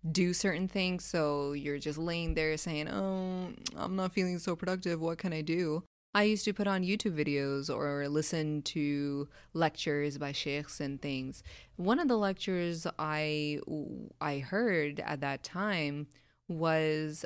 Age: 20-39